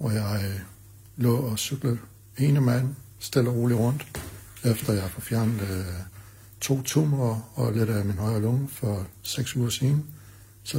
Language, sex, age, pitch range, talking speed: Danish, male, 60-79, 100-125 Hz, 160 wpm